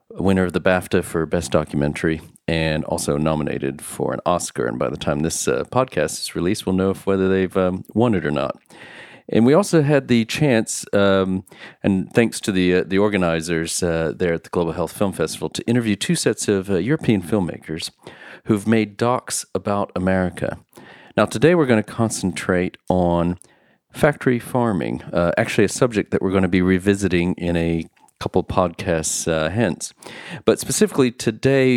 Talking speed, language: 180 wpm, English